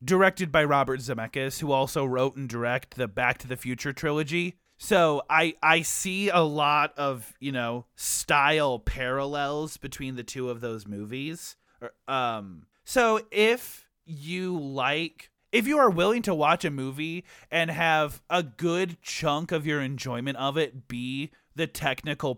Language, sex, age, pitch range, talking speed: English, male, 30-49, 135-180 Hz, 155 wpm